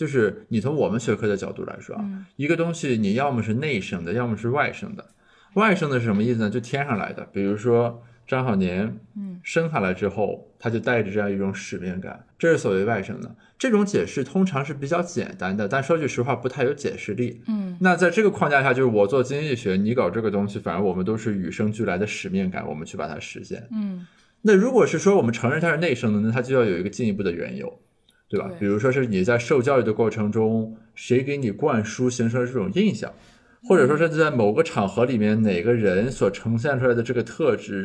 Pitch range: 110-155 Hz